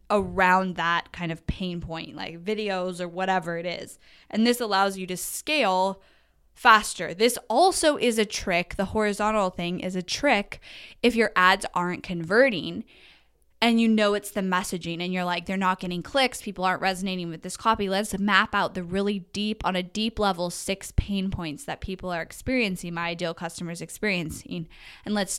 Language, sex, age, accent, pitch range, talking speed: English, female, 10-29, American, 175-210 Hz, 180 wpm